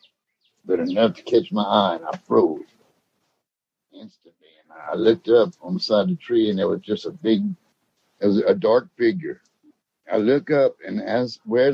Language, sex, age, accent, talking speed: English, male, 60-79, American, 190 wpm